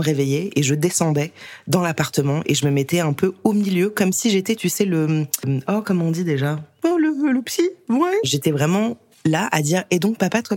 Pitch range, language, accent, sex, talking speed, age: 135-180 Hz, French, French, female, 220 wpm, 20-39